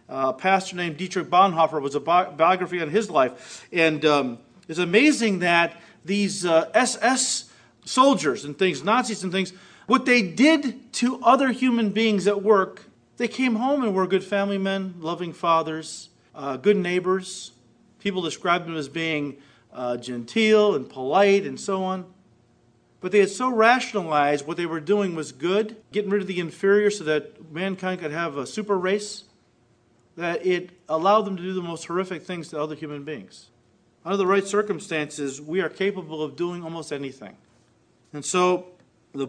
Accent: American